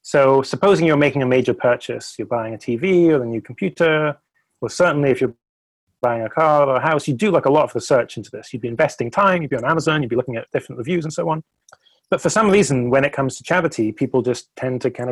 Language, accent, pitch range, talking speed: English, British, 115-150 Hz, 260 wpm